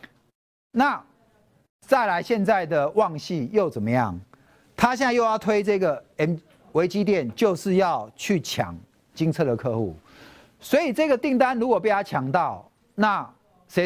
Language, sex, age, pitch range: Chinese, male, 50-69, 120-200 Hz